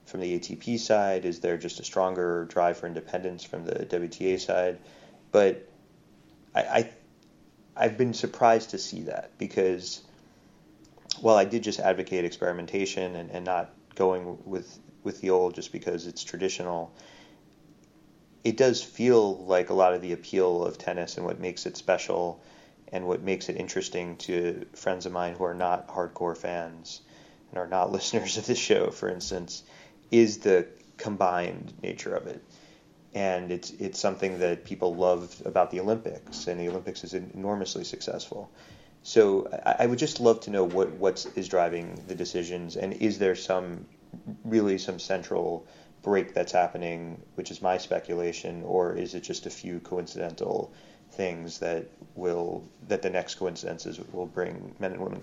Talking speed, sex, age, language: 165 wpm, male, 30-49, English